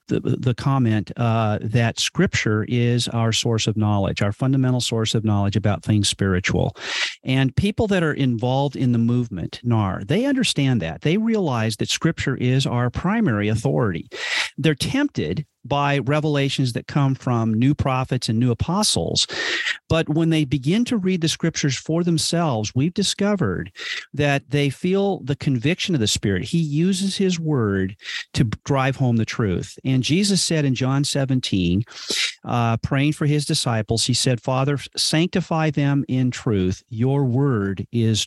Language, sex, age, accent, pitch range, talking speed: English, male, 50-69, American, 115-160 Hz, 160 wpm